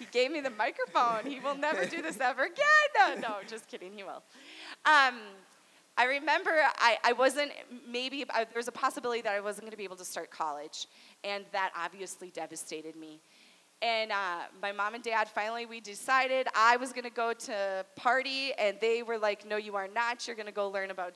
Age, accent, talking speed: 20-39, American, 215 wpm